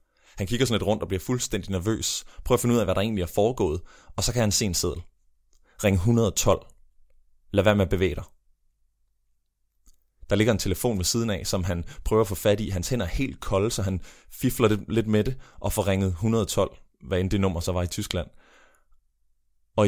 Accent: native